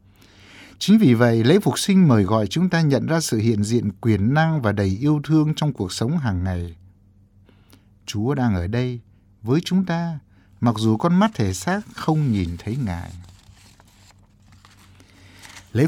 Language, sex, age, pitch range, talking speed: Vietnamese, male, 60-79, 100-150 Hz, 165 wpm